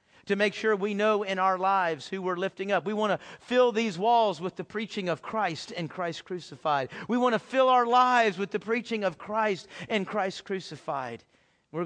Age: 40-59